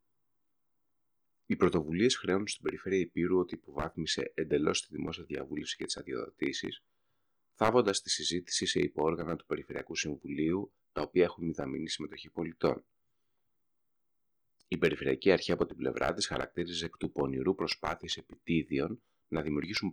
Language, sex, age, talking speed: Greek, male, 30-49, 130 wpm